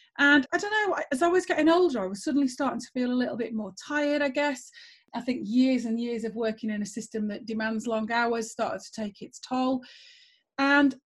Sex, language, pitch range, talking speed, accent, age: female, English, 215-265 Hz, 230 wpm, British, 30-49